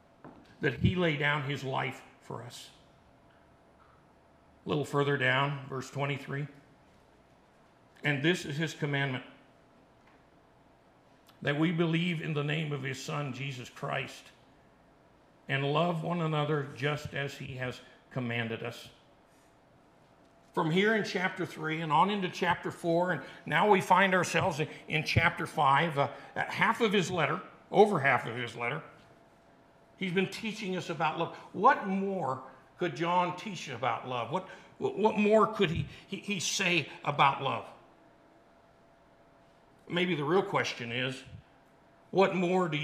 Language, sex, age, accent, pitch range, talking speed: English, male, 60-79, American, 140-175 Hz, 135 wpm